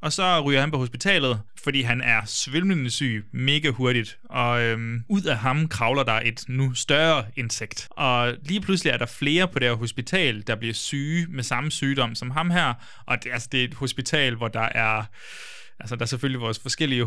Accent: native